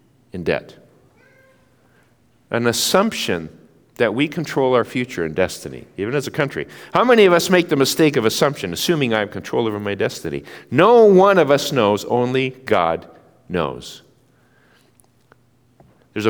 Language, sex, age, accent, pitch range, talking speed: English, male, 50-69, American, 105-145 Hz, 145 wpm